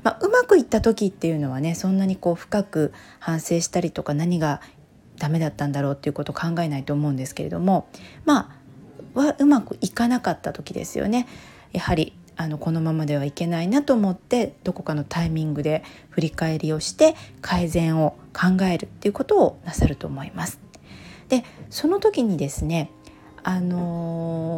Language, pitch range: Japanese, 155-205 Hz